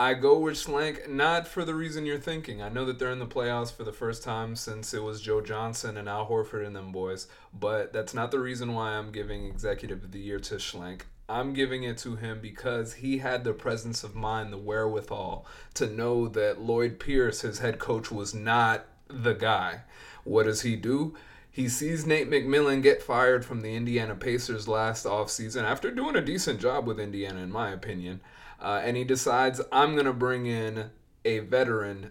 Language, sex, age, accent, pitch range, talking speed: English, male, 30-49, American, 110-130 Hz, 205 wpm